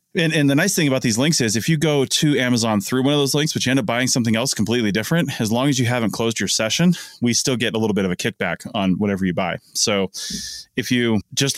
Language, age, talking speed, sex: English, 30-49, 275 wpm, male